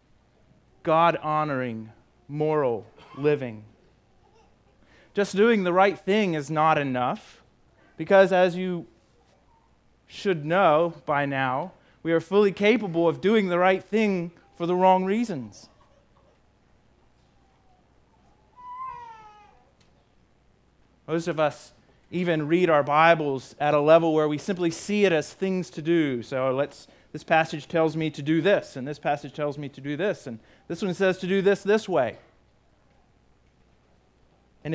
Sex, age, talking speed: male, 30-49, 135 wpm